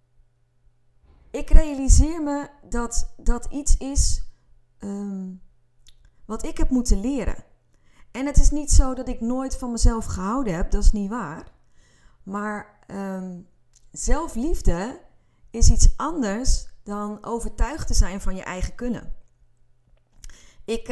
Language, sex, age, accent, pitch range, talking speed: Dutch, female, 30-49, Dutch, 170-230 Hz, 120 wpm